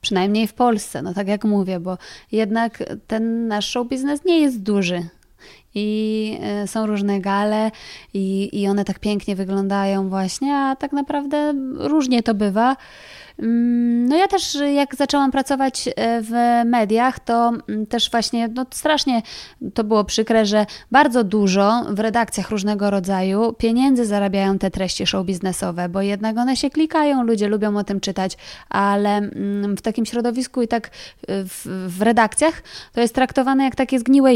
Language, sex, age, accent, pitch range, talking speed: Polish, female, 20-39, native, 195-235 Hz, 150 wpm